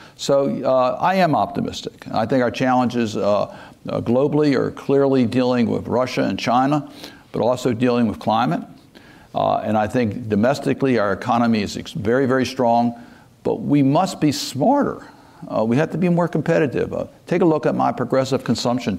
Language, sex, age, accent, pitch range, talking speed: English, male, 60-79, American, 100-130 Hz, 170 wpm